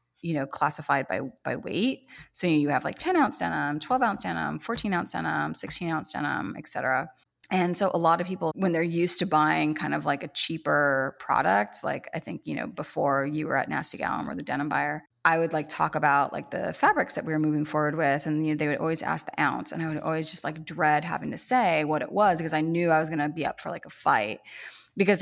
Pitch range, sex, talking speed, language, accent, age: 150-180 Hz, female, 250 wpm, English, American, 20-39